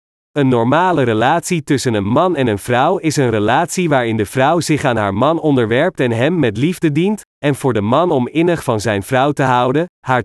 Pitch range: 115-155 Hz